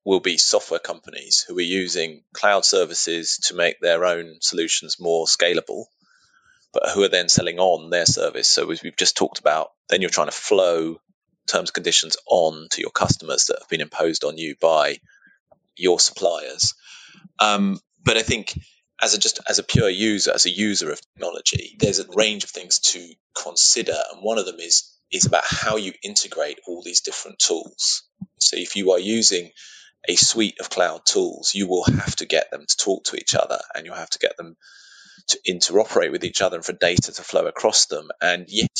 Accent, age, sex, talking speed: British, 30-49, male, 200 wpm